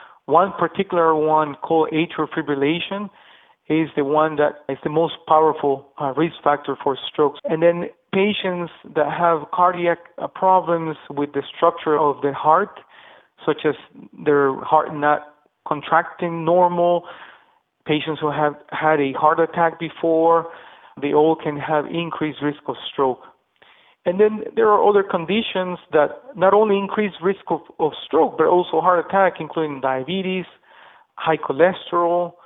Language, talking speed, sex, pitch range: English, 140 wpm, male, 150-180 Hz